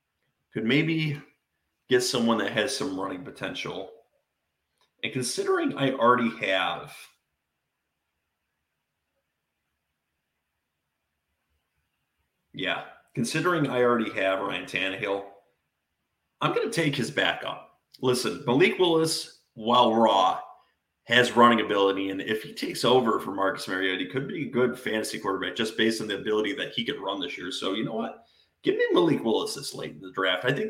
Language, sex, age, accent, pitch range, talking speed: English, male, 30-49, American, 95-130 Hz, 150 wpm